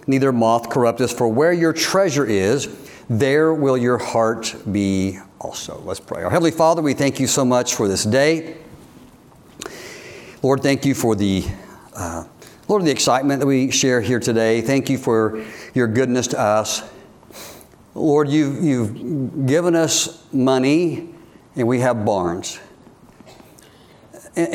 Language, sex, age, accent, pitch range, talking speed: English, male, 60-79, American, 115-145 Hz, 145 wpm